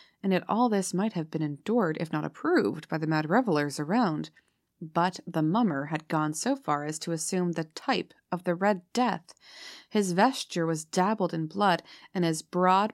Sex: female